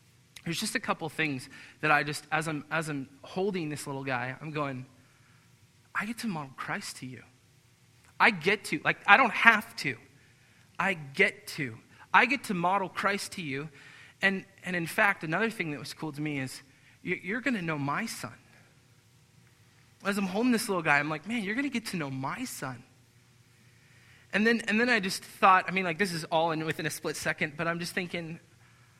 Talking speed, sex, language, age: 210 wpm, male, English, 20-39